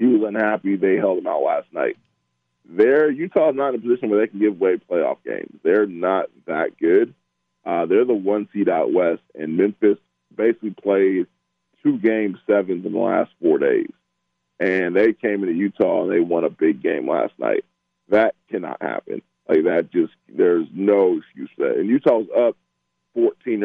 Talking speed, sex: 190 wpm, male